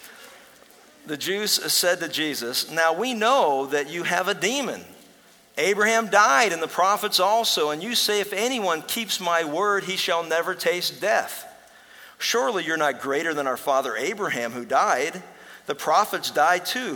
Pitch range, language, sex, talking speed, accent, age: 130-180 Hz, English, male, 165 wpm, American, 50-69